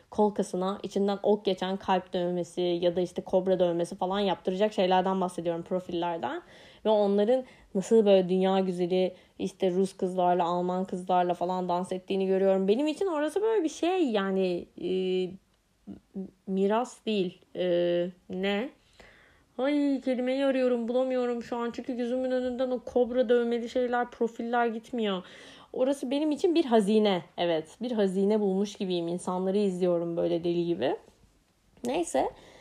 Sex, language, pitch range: female, Turkish, 180-240 Hz